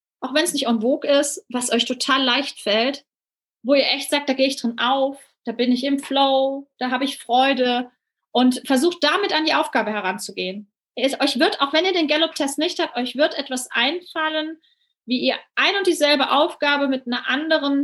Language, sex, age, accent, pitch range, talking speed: German, female, 30-49, German, 245-295 Hz, 200 wpm